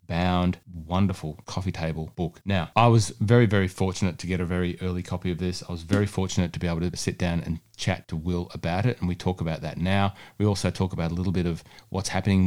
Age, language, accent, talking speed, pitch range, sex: 30-49, English, Australian, 245 wpm, 90-110 Hz, male